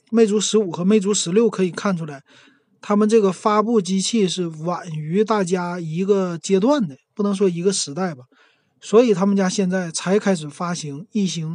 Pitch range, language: 160-210 Hz, Chinese